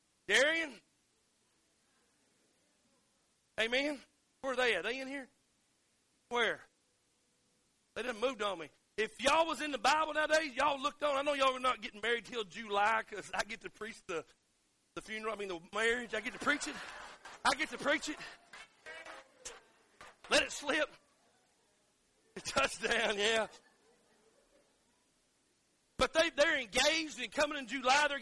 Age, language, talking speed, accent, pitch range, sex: 40-59, English, 155 wpm, American, 230-295 Hz, male